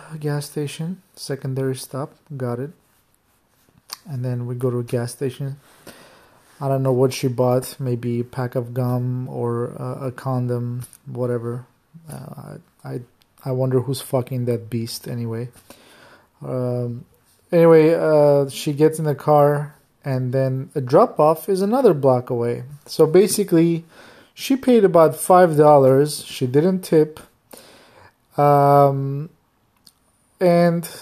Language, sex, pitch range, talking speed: English, male, 125-160 Hz, 130 wpm